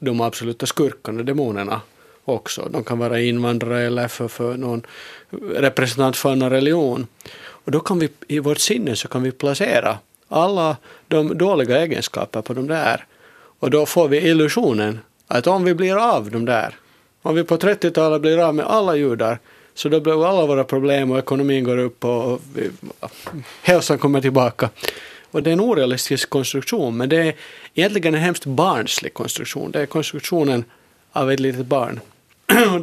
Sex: male